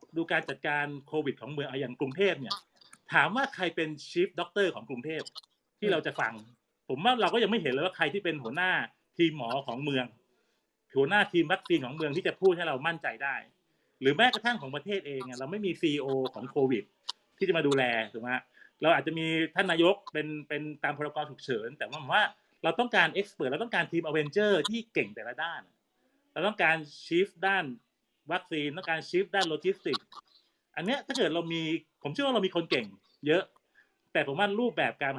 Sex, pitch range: male, 140-195 Hz